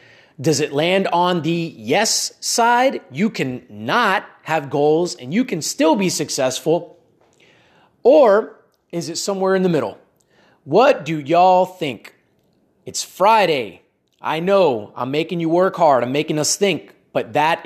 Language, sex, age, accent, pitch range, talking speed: English, male, 30-49, American, 150-190 Hz, 150 wpm